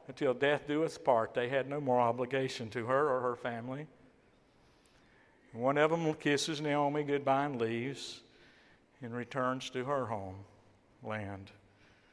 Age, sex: 60-79, male